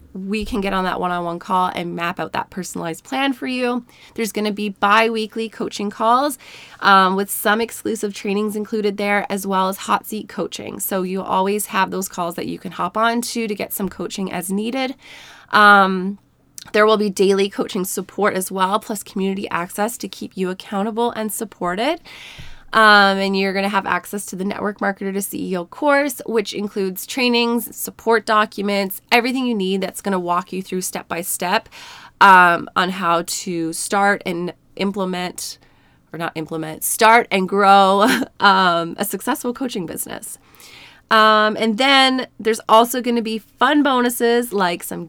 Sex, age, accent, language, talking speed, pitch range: female, 20-39, American, English, 175 wpm, 185-225 Hz